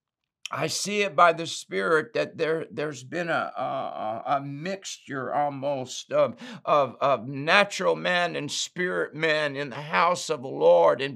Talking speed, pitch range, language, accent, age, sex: 160 wpm, 160-205 Hz, English, American, 60-79, male